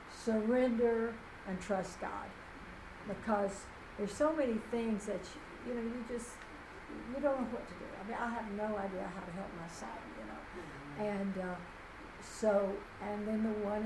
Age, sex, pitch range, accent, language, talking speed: 60-79, female, 195-235 Hz, American, English, 175 wpm